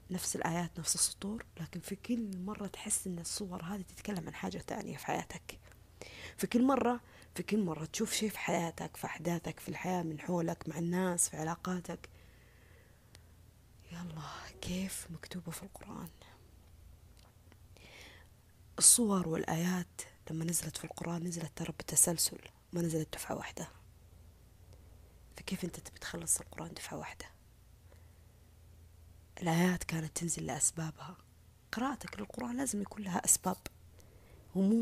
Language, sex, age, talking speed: Arabic, female, 20-39, 125 wpm